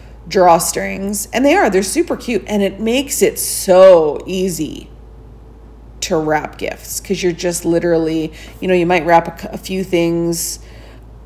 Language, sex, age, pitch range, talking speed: English, female, 40-59, 175-215 Hz, 155 wpm